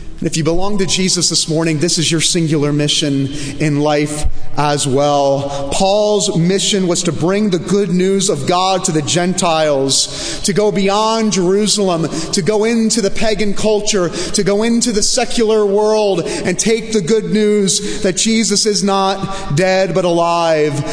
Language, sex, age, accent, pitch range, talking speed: English, male, 30-49, American, 170-220 Hz, 165 wpm